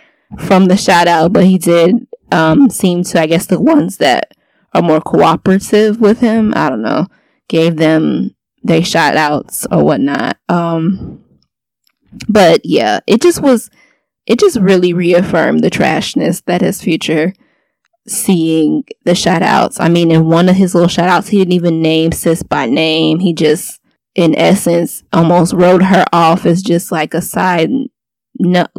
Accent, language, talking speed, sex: American, English, 165 wpm, female